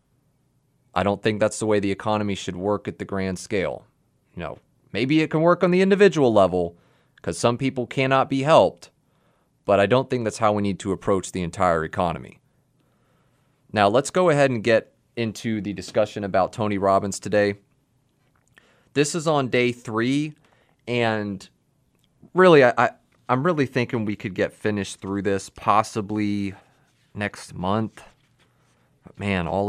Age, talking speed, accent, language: 30-49, 155 wpm, American, English